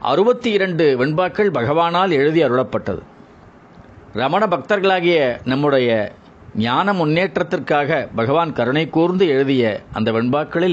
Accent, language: native, Tamil